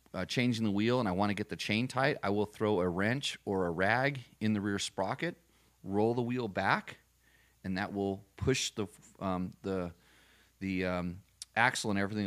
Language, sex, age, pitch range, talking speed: English, male, 30-49, 90-110 Hz, 195 wpm